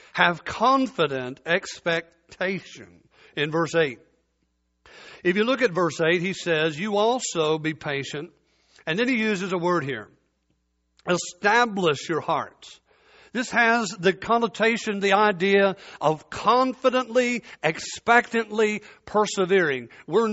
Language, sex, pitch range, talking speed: English, male, 165-220 Hz, 115 wpm